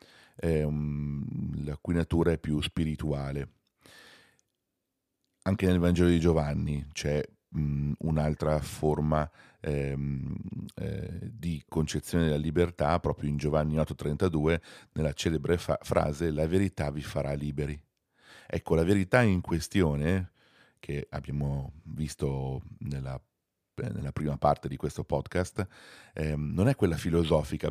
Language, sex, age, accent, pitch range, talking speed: Italian, male, 40-59, native, 75-95 Hz, 115 wpm